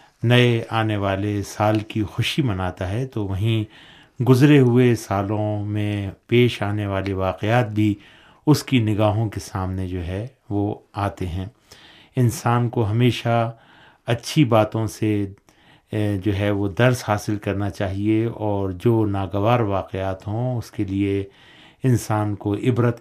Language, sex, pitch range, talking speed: Urdu, male, 100-115 Hz, 140 wpm